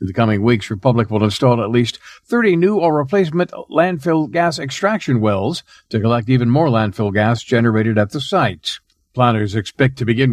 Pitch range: 110-155 Hz